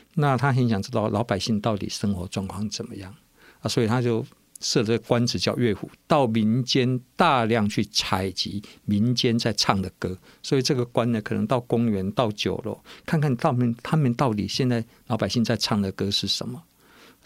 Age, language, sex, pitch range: 50-69, Chinese, male, 105-150 Hz